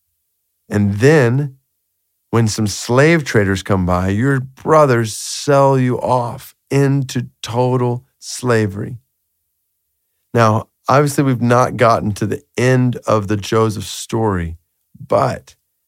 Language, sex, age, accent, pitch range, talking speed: English, male, 40-59, American, 100-130 Hz, 110 wpm